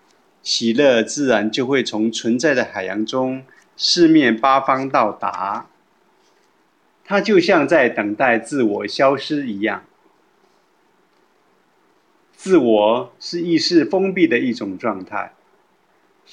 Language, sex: Chinese, male